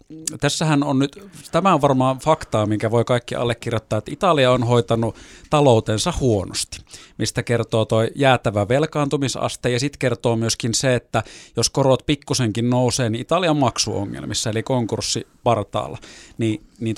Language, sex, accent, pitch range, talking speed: Finnish, male, native, 115-140 Hz, 140 wpm